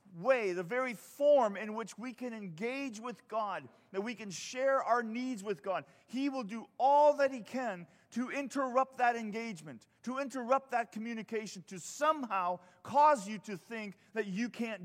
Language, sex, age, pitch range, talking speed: English, male, 40-59, 170-250 Hz, 175 wpm